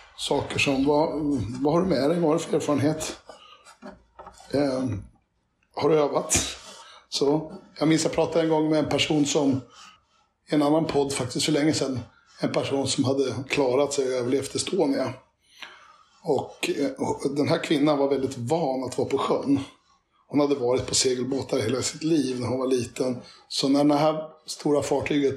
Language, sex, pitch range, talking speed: English, male, 135-155 Hz, 175 wpm